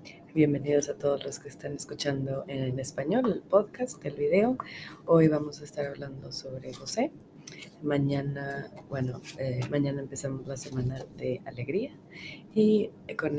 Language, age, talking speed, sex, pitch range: English, 30-49, 140 wpm, female, 130-145 Hz